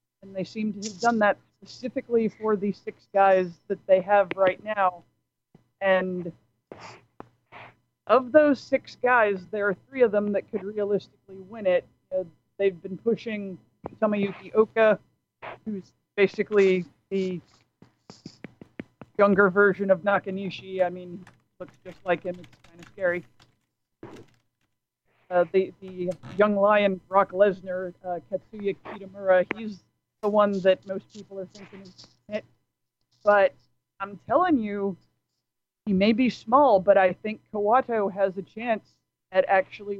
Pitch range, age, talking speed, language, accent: 180-210 Hz, 50-69, 135 wpm, English, American